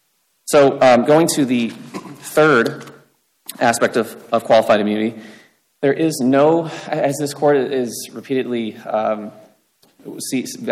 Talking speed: 120 wpm